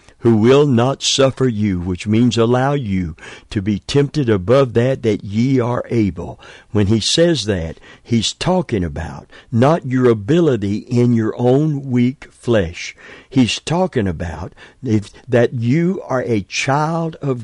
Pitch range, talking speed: 105-135 Hz, 145 wpm